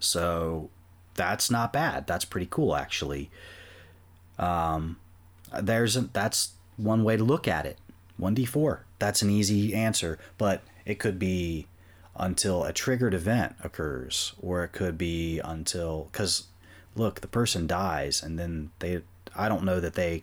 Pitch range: 85-100 Hz